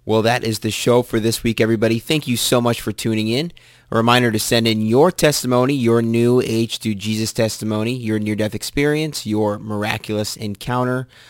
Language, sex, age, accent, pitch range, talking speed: English, male, 30-49, American, 105-125 Hz, 185 wpm